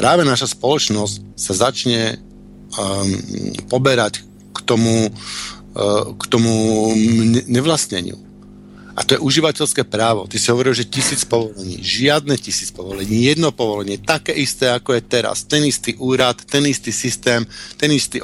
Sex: male